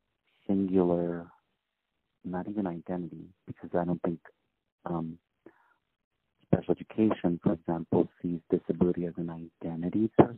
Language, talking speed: English, 110 wpm